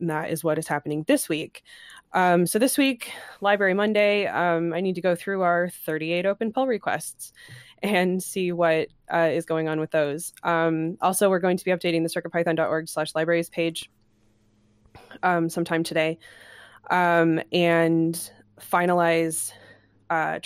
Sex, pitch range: female, 155-180 Hz